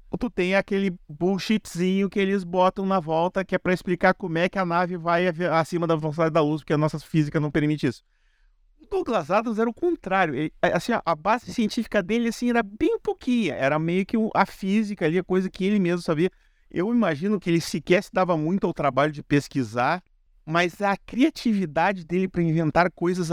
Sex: male